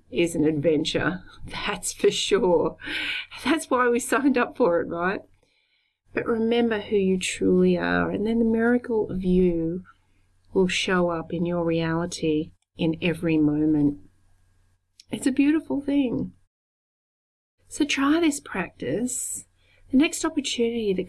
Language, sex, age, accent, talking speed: English, female, 30-49, Australian, 135 wpm